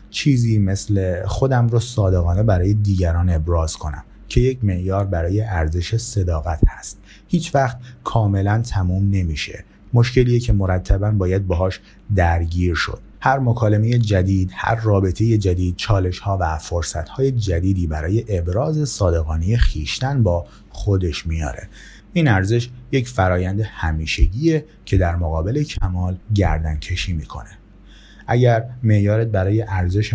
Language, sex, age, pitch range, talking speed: Persian, male, 30-49, 90-115 Hz, 125 wpm